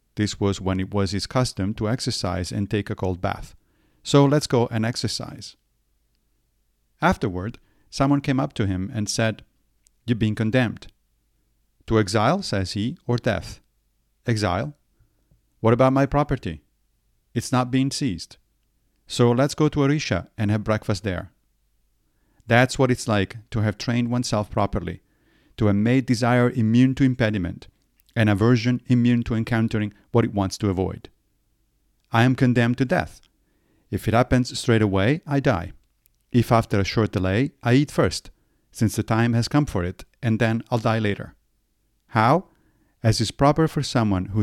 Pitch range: 100-125 Hz